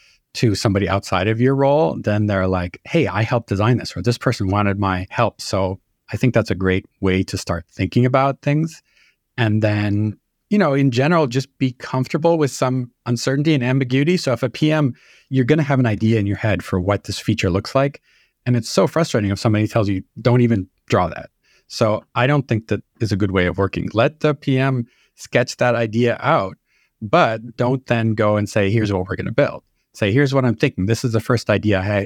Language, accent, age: English, American, 40-59